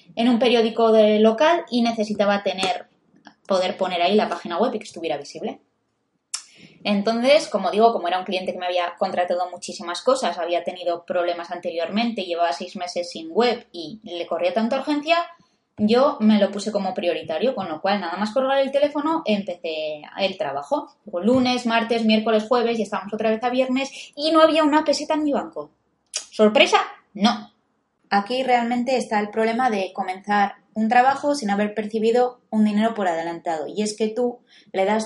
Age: 20-39